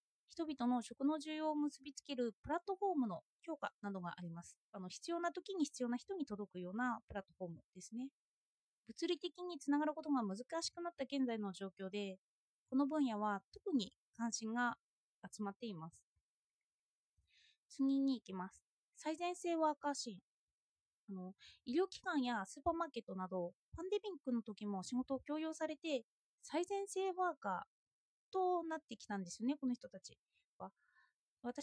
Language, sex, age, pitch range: Japanese, female, 20-39, 210-315 Hz